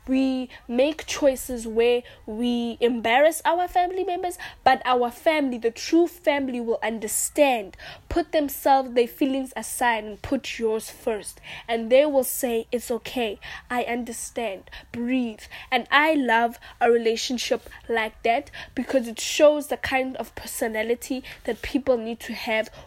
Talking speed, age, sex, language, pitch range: 140 wpm, 10-29, female, English, 230-270 Hz